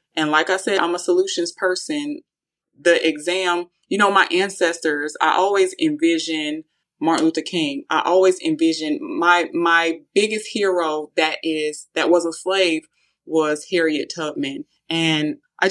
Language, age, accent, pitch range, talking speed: English, 20-39, American, 160-205 Hz, 145 wpm